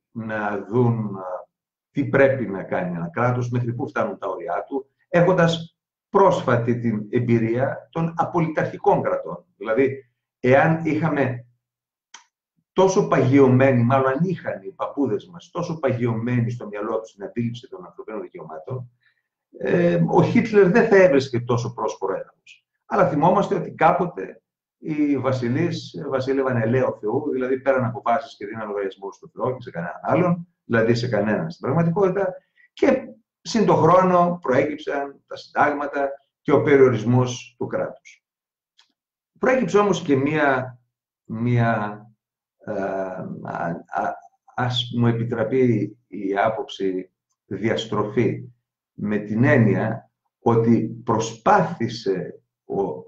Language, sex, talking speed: Greek, male, 115 wpm